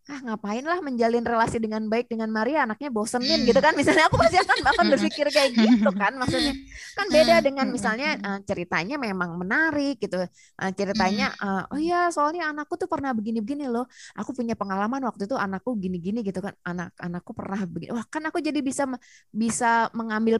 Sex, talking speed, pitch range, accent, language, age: female, 180 wpm, 200-270 Hz, native, Indonesian, 20-39